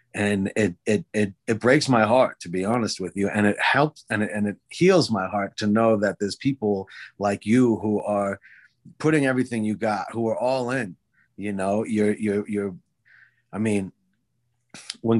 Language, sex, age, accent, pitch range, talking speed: English, male, 30-49, American, 100-115 Hz, 190 wpm